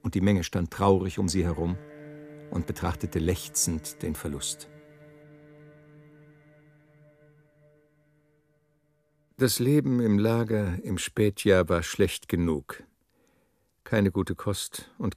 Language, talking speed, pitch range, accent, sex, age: German, 105 wpm, 90-125 Hz, German, male, 60-79